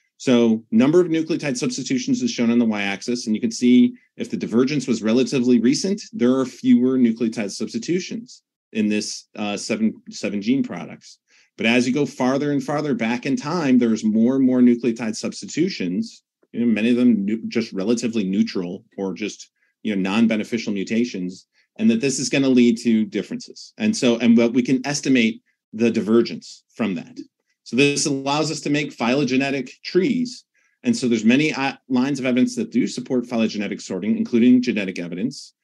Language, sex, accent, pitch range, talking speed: English, male, American, 115-160 Hz, 180 wpm